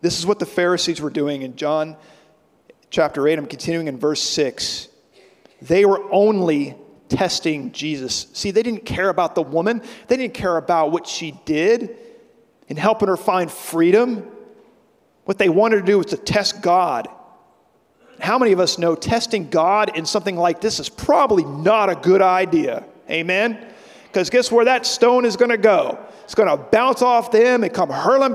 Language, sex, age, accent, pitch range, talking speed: English, male, 40-59, American, 155-220 Hz, 180 wpm